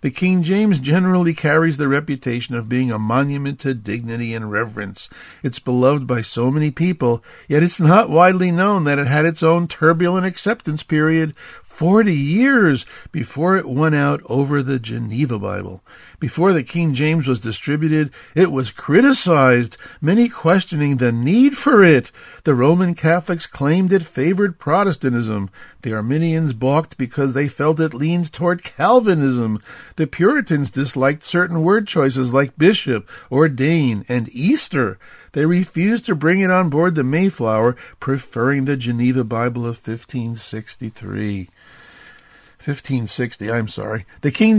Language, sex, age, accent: English, male, 50-69, American